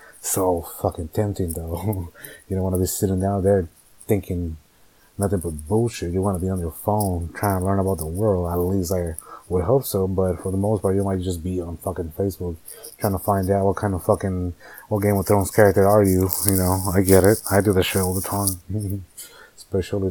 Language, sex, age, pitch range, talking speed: English, male, 30-49, 90-105 Hz, 225 wpm